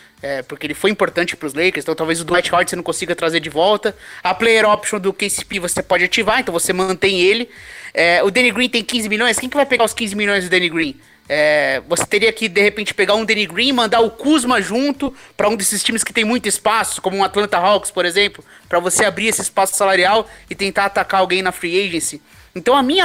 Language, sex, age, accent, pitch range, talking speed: English, male, 20-39, Brazilian, 190-240 Hz, 240 wpm